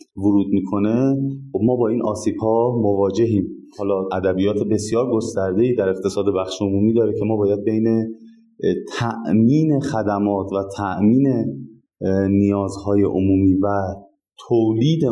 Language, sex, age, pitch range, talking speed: Persian, male, 30-49, 100-115 Hz, 120 wpm